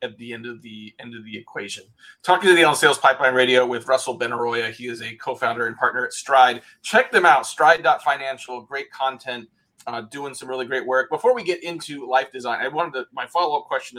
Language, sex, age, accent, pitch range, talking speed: English, male, 30-49, American, 120-155 Hz, 220 wpm